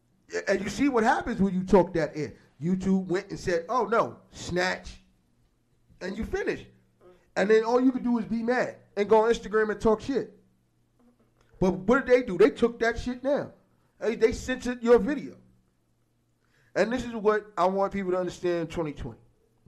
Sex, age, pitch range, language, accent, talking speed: male, 30-49, 140-195 Hz, English, American, 185 wpm